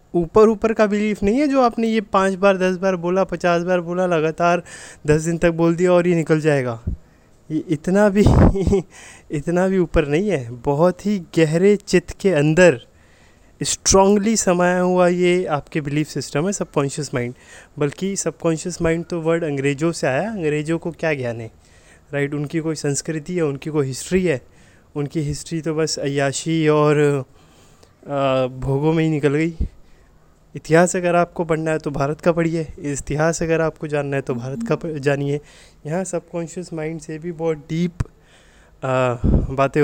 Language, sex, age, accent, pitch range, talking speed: Hindi, male, 20-39, native, 145-180 Hz, 165 wpm